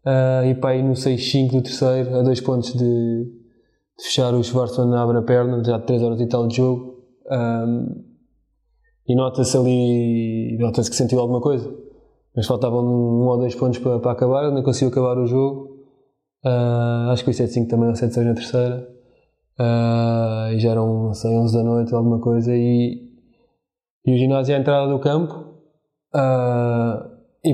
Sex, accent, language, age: male, Portuguese, Portuguese, 20-39